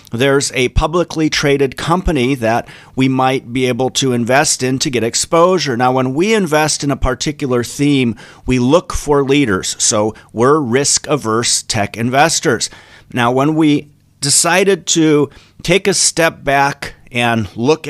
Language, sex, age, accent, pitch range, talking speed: English, male, 40-59, American, 115-145 Hz, 150 wpm